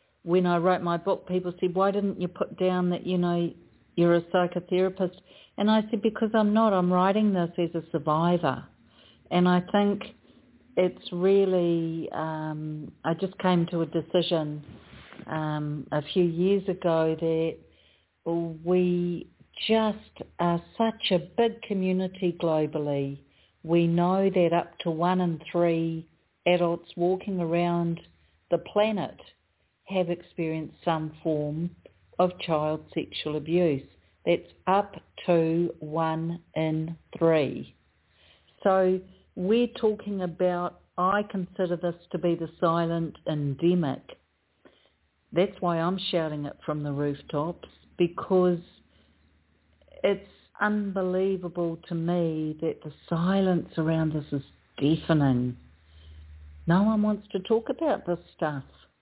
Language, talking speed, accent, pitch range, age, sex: English, 125 wpm, Australian, 155-185 Hz, 50-69, female